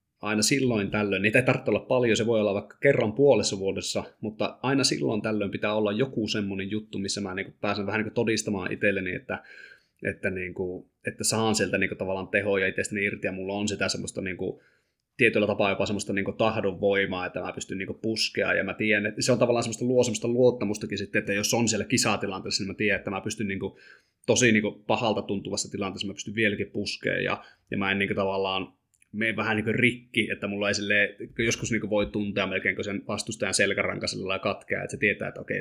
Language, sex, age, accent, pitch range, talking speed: Finnish, male, 20-39, native, 100-115 Hz, 210 wpm